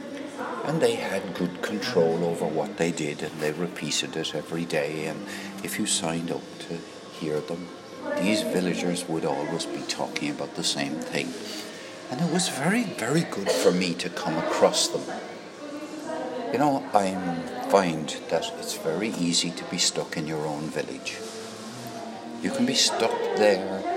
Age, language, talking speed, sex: 60-79, English, 165 wpm, male